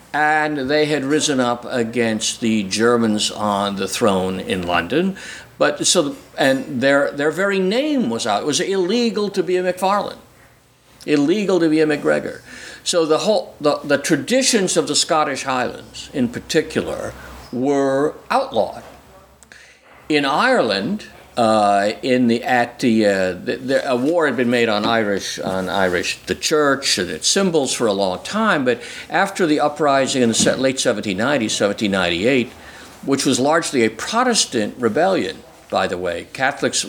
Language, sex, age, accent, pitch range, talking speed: English, male, 60-79, American, 115-180 Hz, 155 wpm